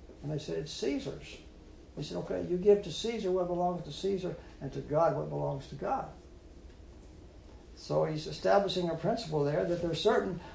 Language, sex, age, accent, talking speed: English, male, 60-79, American, 190 wpm